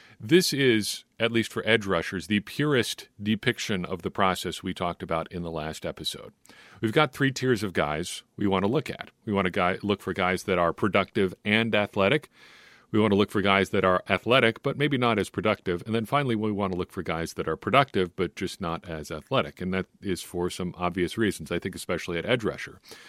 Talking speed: 225 wpm